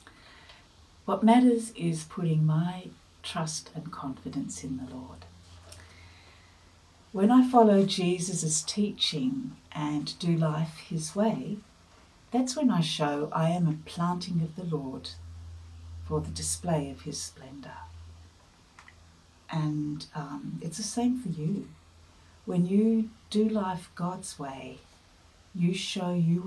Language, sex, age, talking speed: English, female, 60-79, 120 wpm